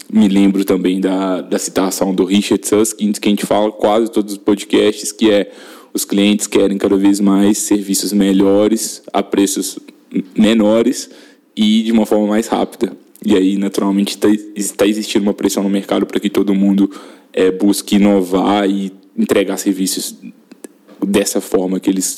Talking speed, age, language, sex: 160 wpm, 10-29, Portuguese, male